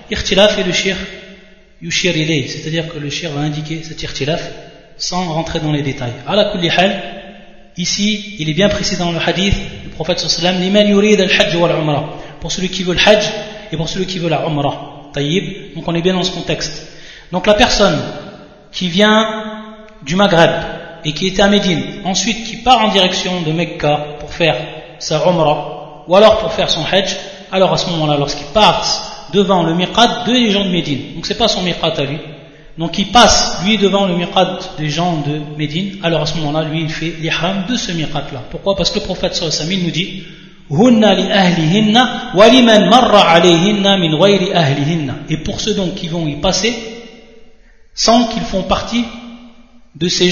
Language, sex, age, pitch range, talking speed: French, male, 30-49, 160-205 Hz, 175 wpm